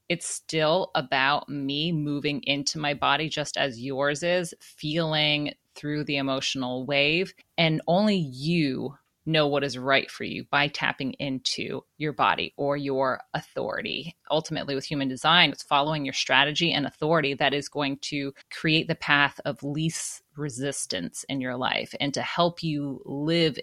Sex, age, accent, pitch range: female, 30-49, American, 140-160 Hz